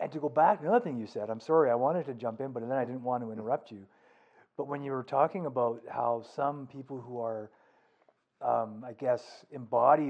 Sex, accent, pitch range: male, American, 115-155 Hz